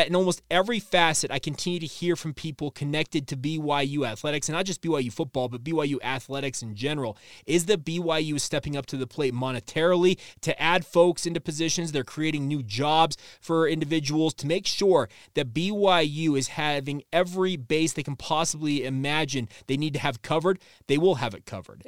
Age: 30-49